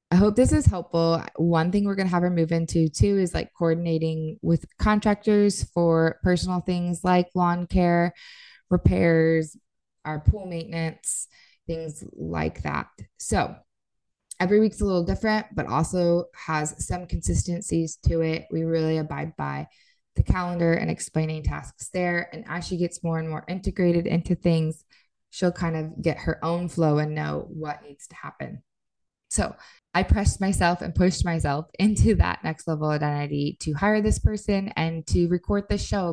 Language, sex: English, female